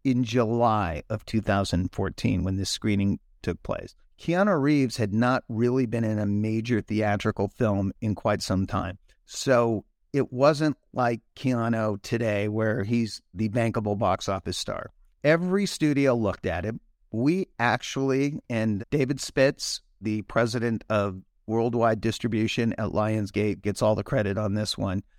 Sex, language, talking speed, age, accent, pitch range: male, English, 145 wpm, 50-69, American, 105-135 Hz